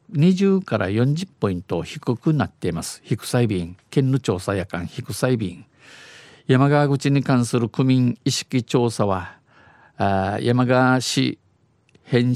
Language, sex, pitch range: Japanese, male, 110-130 Hz